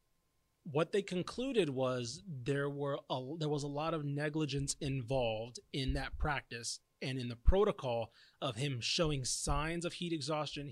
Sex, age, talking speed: male, 30-49, 155 wpm